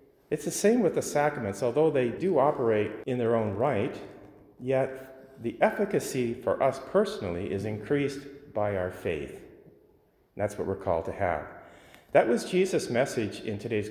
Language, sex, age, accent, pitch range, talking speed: English, male, 40-59, American, 110-145 Hz, 160 wpm